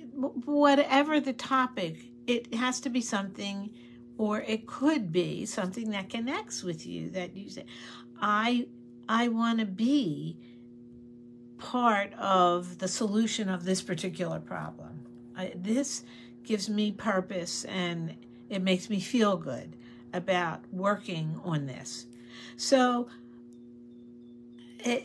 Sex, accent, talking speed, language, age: female, American, 120 wpm, English, 50-69